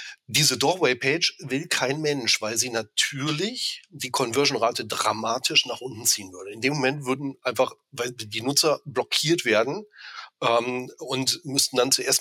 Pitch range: 125-175 Hz